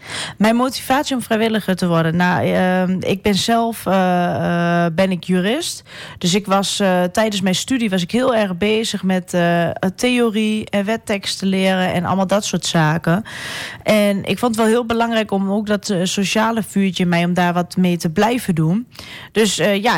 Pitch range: 180-225 Hz